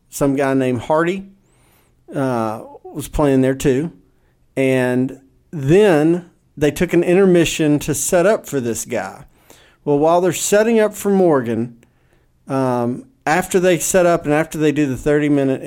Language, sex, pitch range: English, male, 125-165 Hz